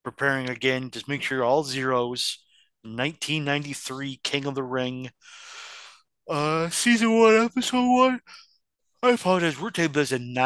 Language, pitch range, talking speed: English, 115-150 Hz, 145 wpm